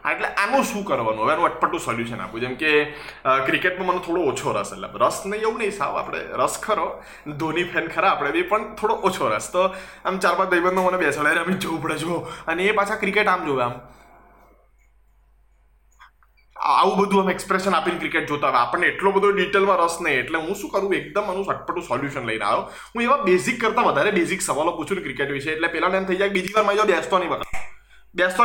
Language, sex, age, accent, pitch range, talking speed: Gujarati, male, 20-39, native, 150-215 Hz, 170 wpm